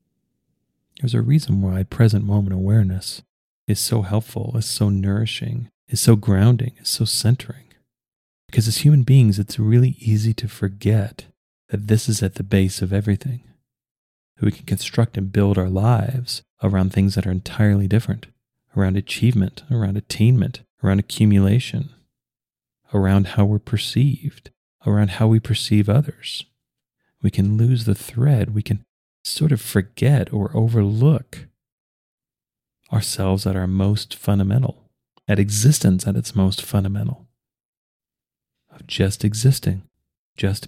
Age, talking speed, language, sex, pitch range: 40-59, 135 wpm, English, male, 100-125 Hz